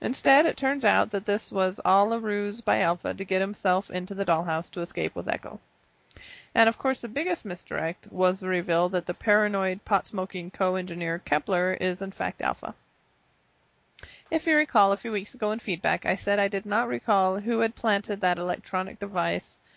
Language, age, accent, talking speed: English, 30-49, American, 190 wpm